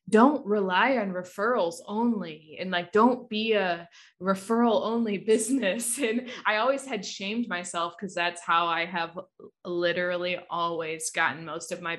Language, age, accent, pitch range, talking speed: English, 20-39, American, 180-215 Hz, 150 wpm